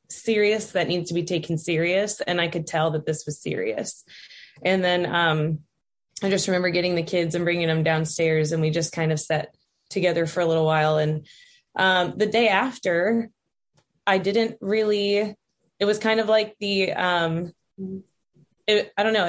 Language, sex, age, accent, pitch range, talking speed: English, female, 20-39, American, 165-200 Hz, 175 wpm